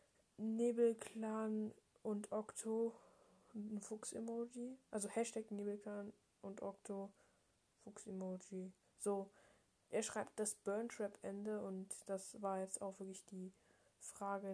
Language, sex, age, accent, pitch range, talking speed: German, female, 10-29, German, 195-220 Hz, 100 wpm